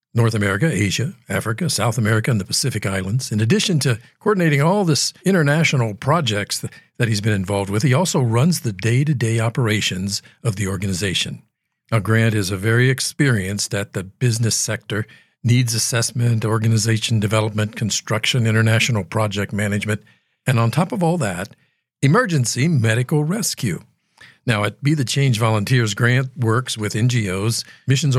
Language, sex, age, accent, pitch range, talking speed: English, male, 50-69, American, 110-140 Hz, 145 wpm